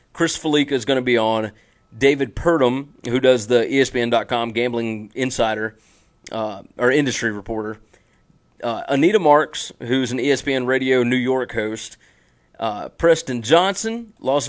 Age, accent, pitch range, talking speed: 30-49, American, 120-155 Hz, 135 wpm